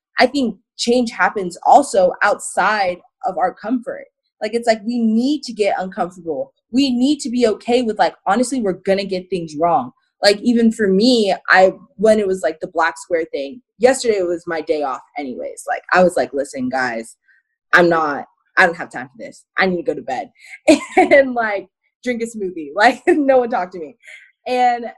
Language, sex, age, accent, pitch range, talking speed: English, female, 20-39, American, 200-265 Hz, 195 wpm